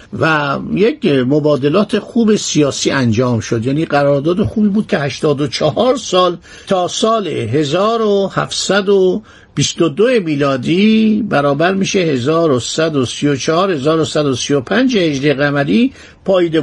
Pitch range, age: 135-180 Hz, 50-69